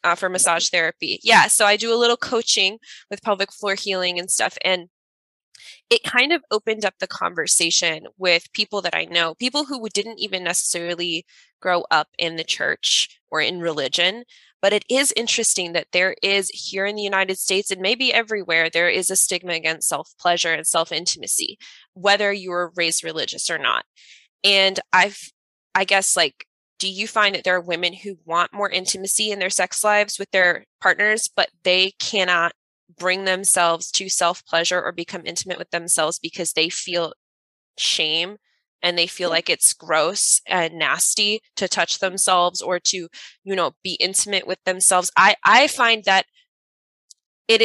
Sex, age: female, 20-39